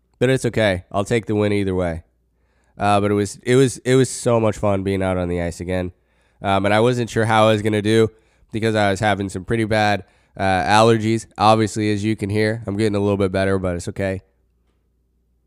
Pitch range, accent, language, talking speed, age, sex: 95-110 Hz, American, English, 230 wpm, 20-39, male